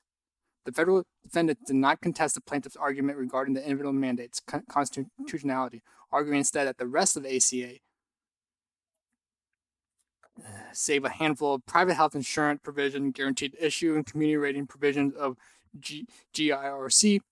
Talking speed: 130 wpm